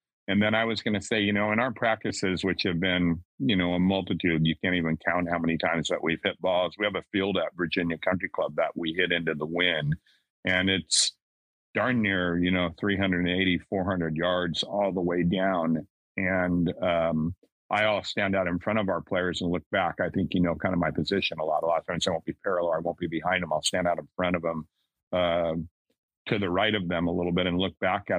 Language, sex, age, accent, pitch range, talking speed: English, male, 50-69, American, 85-100 Hz, 245 wpm